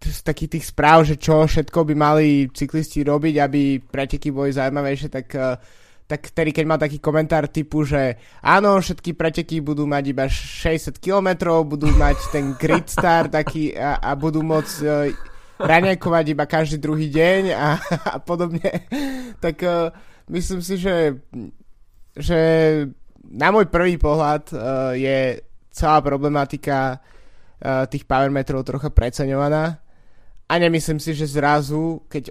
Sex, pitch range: male, 135-160 Hz